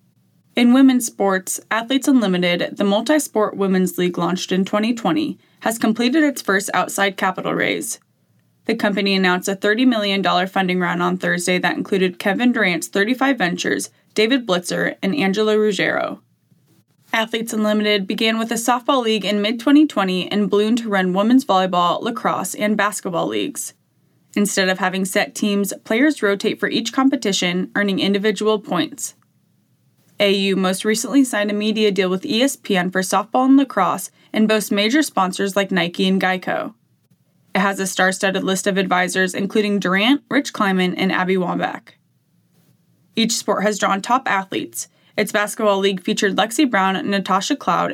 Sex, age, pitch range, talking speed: female, 20-39, 190-225 Hz, 150 wpm